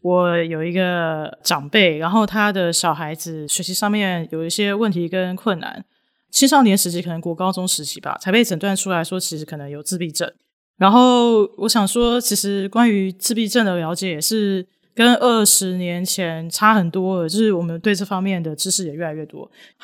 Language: Chinese